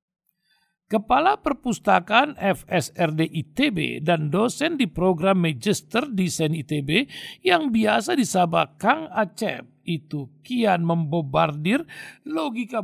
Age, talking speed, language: 60-79, 95 wpm, Indonesian